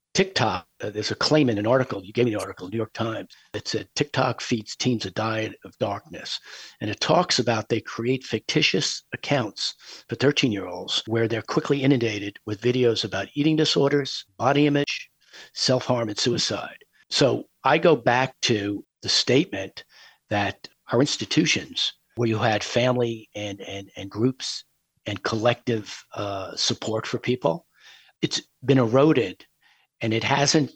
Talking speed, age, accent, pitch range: 155 wpm, 50-69, American, 110-135 Hz